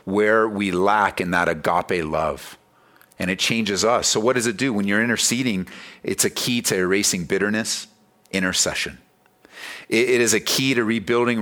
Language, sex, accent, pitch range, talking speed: English, male, American, 90-120 Hz, 170 wpm